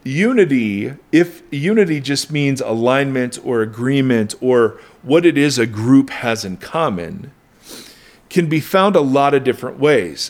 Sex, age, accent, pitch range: male, 40-59, American, 120-150 Hz